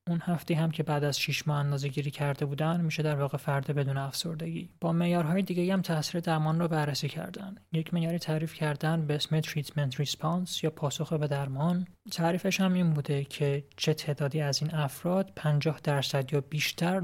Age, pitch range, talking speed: 30-49, 145-165 Hz, 185 wpm